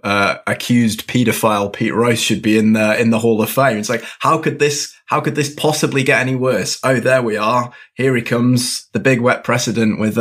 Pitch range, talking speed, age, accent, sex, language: 105-125 Hz, 225 wpm, 20-39, British, male, English